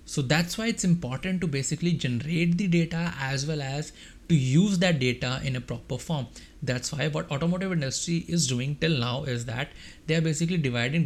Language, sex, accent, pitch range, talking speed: English, male, Indian, 125-155 Hz, 195 wpm